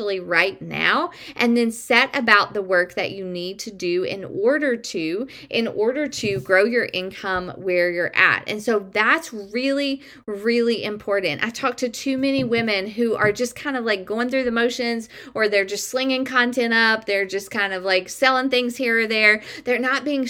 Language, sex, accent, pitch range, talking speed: English, female, American, 200-260 Hz, 195 wpm